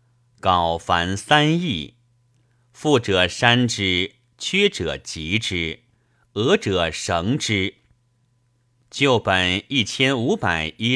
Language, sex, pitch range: Chinese, male, 95-125 Hz